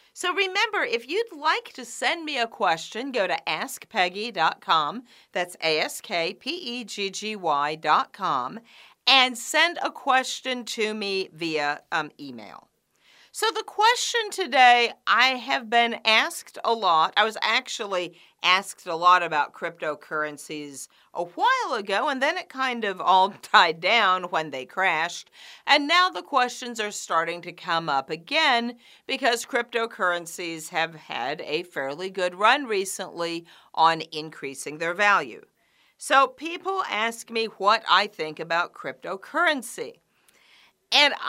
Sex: female